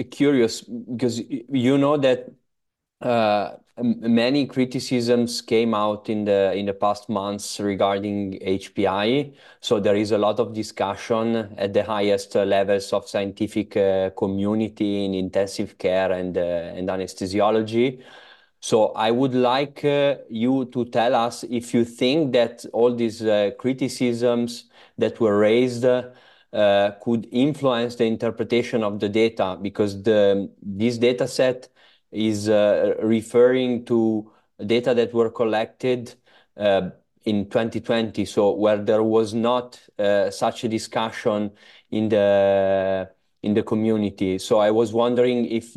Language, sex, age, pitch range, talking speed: English, male, 30-49, 100-120 Hz, 135 wpm